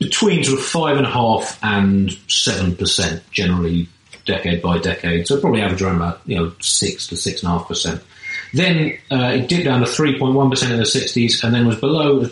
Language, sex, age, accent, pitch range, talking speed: English, male, 40-59, British, 95-125 Hz, 230 wpm